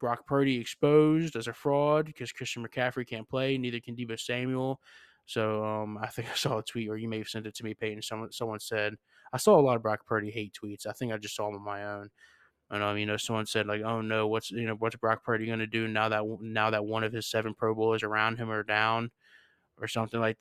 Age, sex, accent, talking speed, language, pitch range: 20-39, male, American, 255 wpm, English, 110-125 Hz